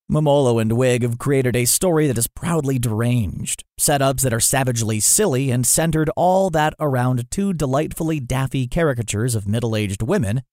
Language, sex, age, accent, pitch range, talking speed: English, male, 30-49, American, 115-155 Hz, 160 wpm